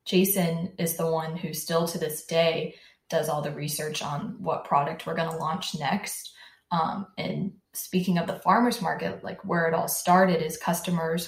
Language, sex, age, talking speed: English, female, 20-39, 185 wpm